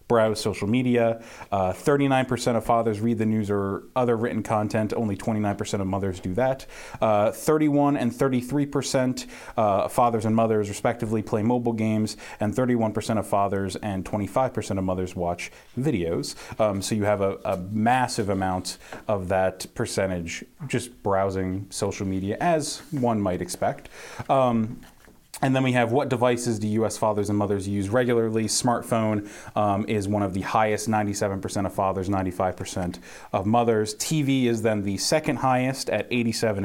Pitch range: 95-120 Hz